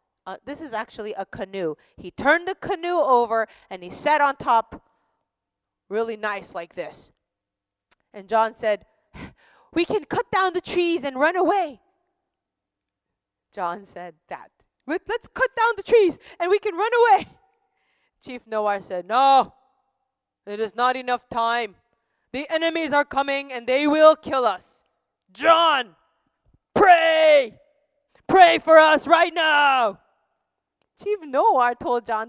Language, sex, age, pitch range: Korean, female, 20-39, 225-370 Hz